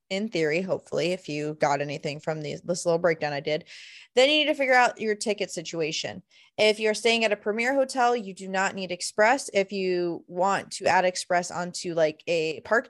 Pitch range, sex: 175-225 Hz, female